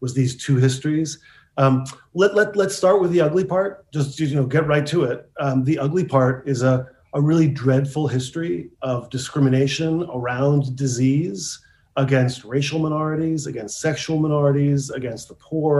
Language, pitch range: English, 125-150 Hz